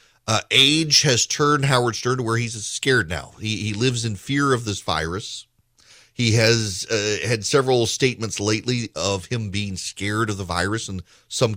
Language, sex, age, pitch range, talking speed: English, male, 40-59, 110-145 Hz, 180 wpm